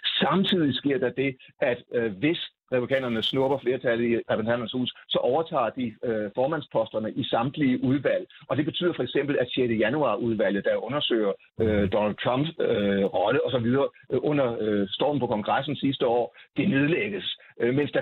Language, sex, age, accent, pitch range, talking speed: Danish, male, 60-79, native, 110-150 Hz, 165 wpm